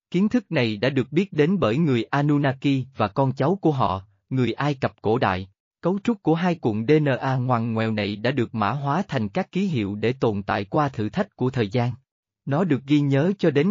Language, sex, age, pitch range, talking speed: Vietnamese, male, 20-39, 115-165 Hz, 230 wpm